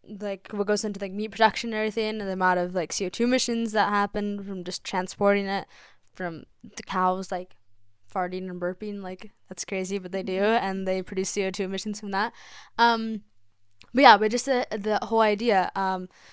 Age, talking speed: 10-29, 190 wpm